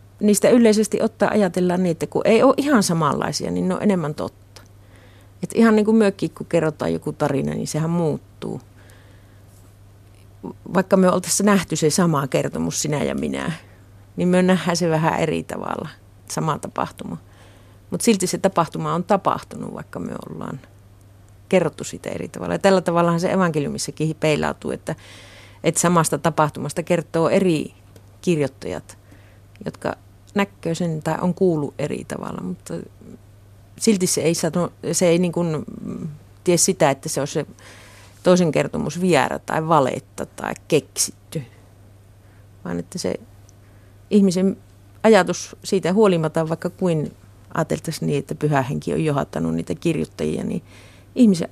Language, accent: Finnish, native